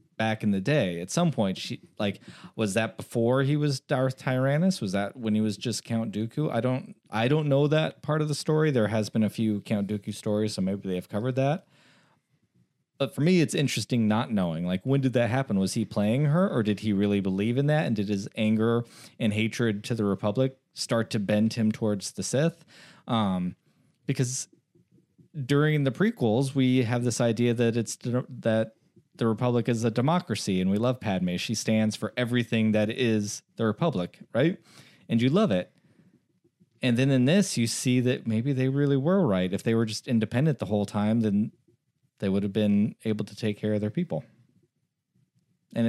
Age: 30-49